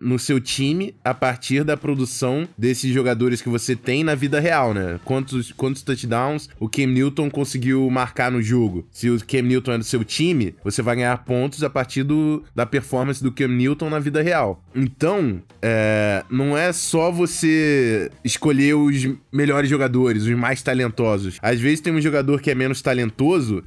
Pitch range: 115-140 Hz